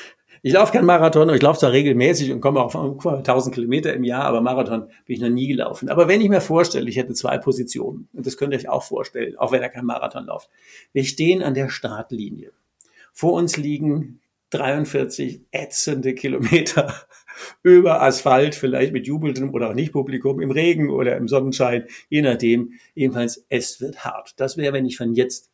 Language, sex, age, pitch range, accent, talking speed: German, male, 60-79, 130-175 Hz, German, 195 wpm